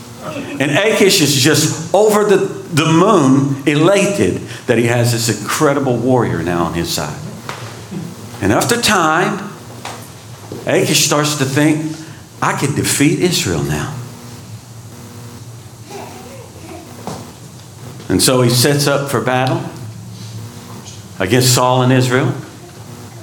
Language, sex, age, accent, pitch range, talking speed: English, male, 50-69, American, 120-150 Hz, 110 wpm